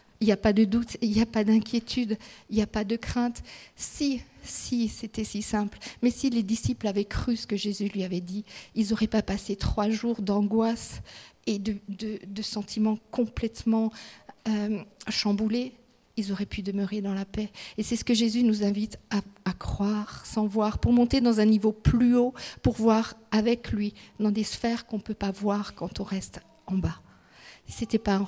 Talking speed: 205 wpm